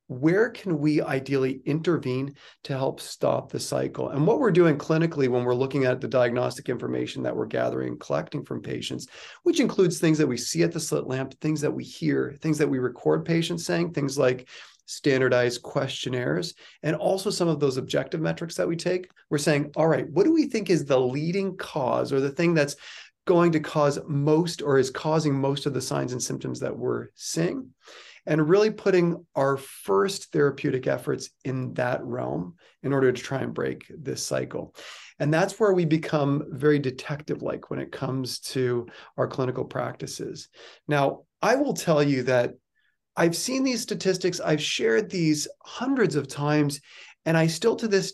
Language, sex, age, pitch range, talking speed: English, male, 30-49, 135-170 Hz, 185 wpm